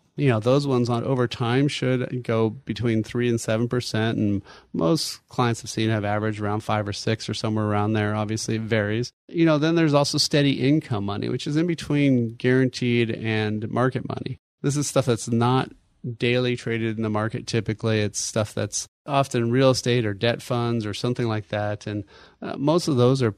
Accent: American